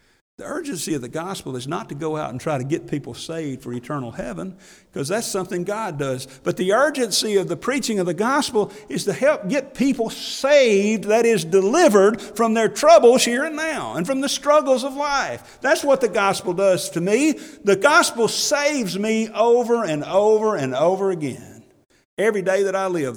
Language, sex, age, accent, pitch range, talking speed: English, male, 50-69, American, 145-245 Hz, 195 wpm